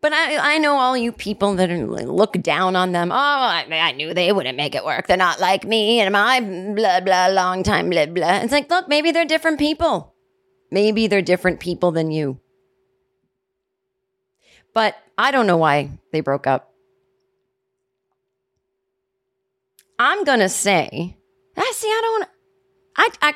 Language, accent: English, American